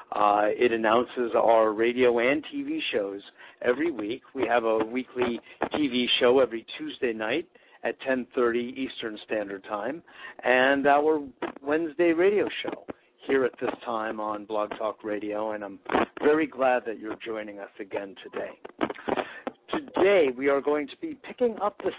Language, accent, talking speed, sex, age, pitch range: English, American, 155 wpm, male, 60-79, 115-155 Hz